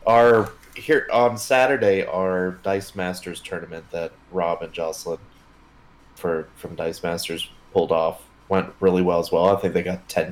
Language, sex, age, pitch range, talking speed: English, male, 20-39, 85-95 Hz, 165 wpm